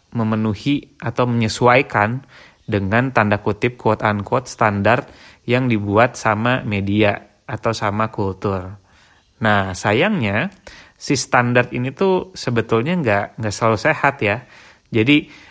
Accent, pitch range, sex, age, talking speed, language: native, 105-120 Hz, male, 30-49, 115 wpm, Indonesian